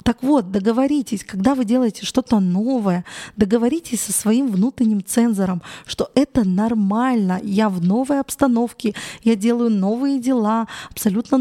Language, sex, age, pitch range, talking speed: Russian, female, 20-39, 205-240 Hz, 130 wpm